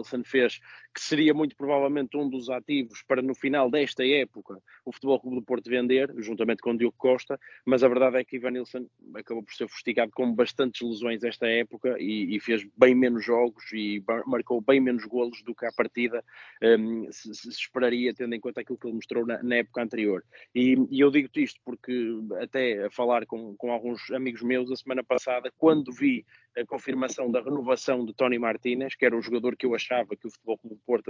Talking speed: 210 wpm